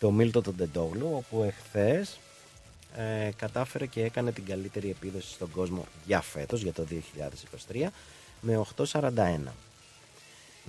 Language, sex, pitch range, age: Greek, male, 95-120 Hz, 30-49